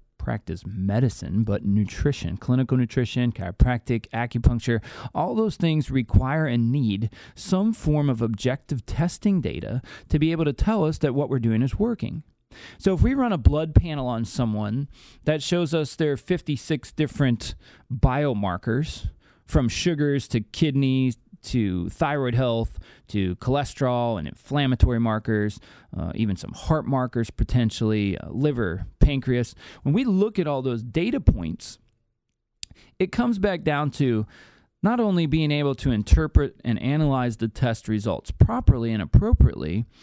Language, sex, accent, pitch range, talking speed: English, male, American, 110-155 Hz, 145 wpm